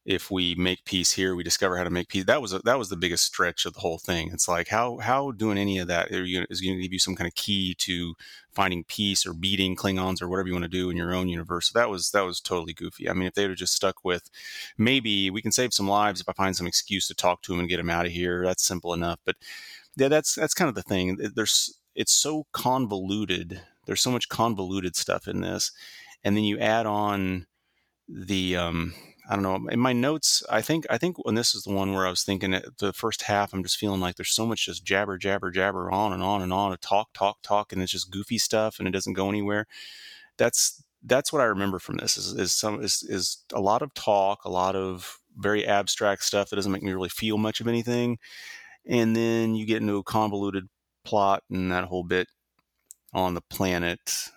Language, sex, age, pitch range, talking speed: English, male, 30-49, 90-105 Hz, 245 wpm